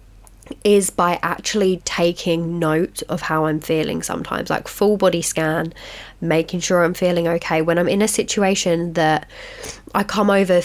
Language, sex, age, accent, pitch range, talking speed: English, female, 20-39, British, 165-220 Hz, 160 wpm